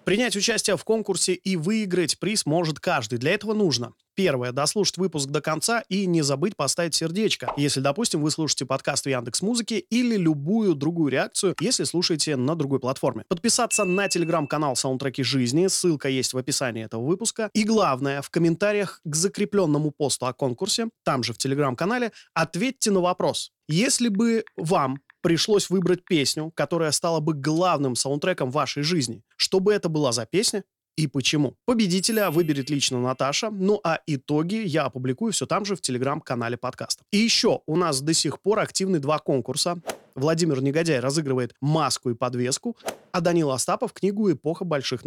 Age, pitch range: 20-39, 140-195 Hz